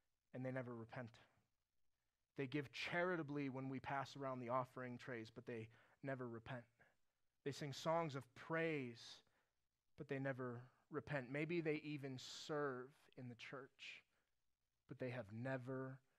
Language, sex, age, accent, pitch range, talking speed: English, male, 30-49, American, 135-200 Hz, 140 wpm